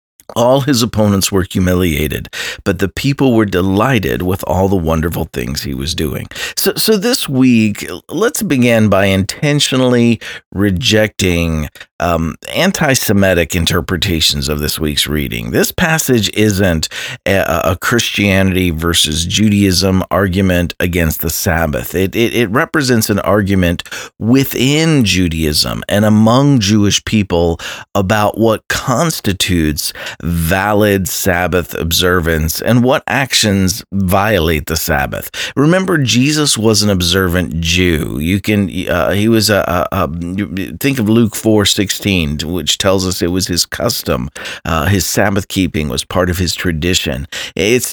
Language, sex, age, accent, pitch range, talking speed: English, male, 40-59, American, 85-110 Hz, 130 wpm